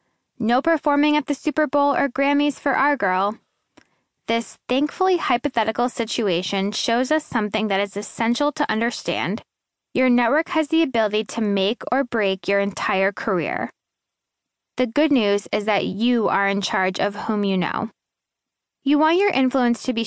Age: 10-29